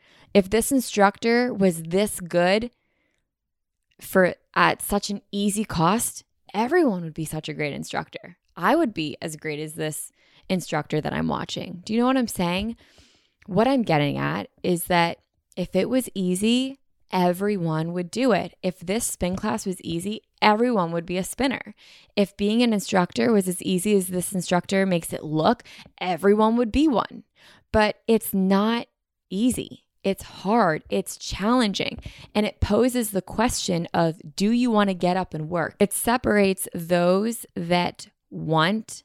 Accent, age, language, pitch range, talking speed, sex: American, 10-29, English, 170-220 Hz, 160 wpm, female